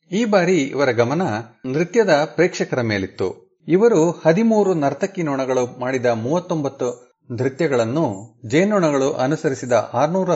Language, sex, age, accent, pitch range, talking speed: Kannada, male, 40-59, native, 125-175 Hz, 100 wpm